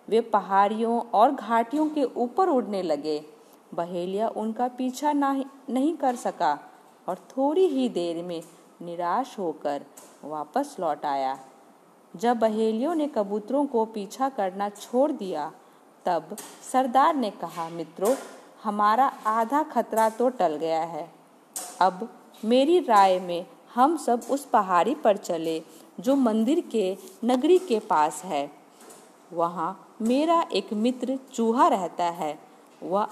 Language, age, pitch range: Hindi, 50-69, 175-250 Hz